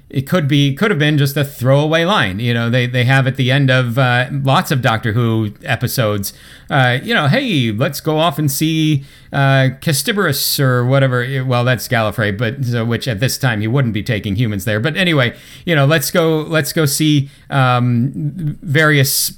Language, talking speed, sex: English, 200 wpm, male